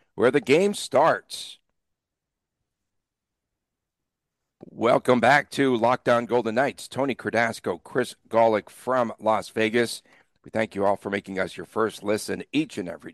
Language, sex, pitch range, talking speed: English, male, 100-130 Hz, 135 wpm